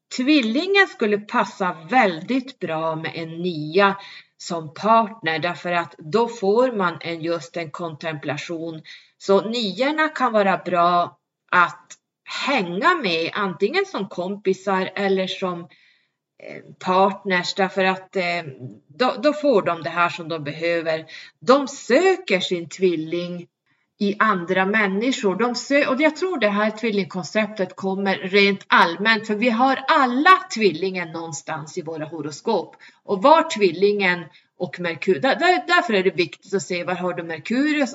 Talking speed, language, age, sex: 135 wpm, Swedish, 30-49, female